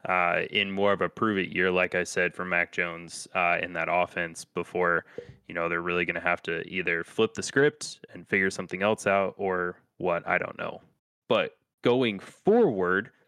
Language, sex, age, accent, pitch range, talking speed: English, male, 20-39, American, 95-120 Hz, 195 wpm